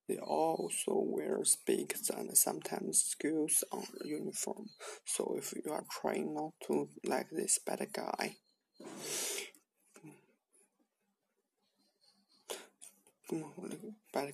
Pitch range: 140-160 Hz